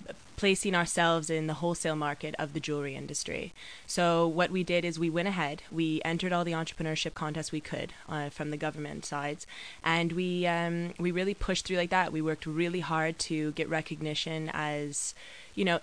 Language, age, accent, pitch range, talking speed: English, 20-39, American, 155-170 Hz, 190 wpm